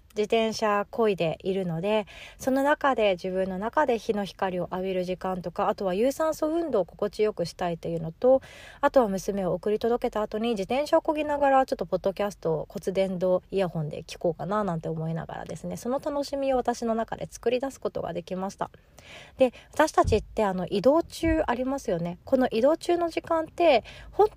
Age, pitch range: 30-49, 185-255 Hz